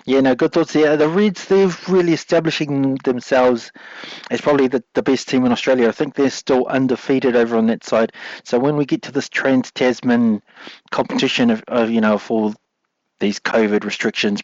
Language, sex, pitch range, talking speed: English, male, 110-140 Hz, 185 wpm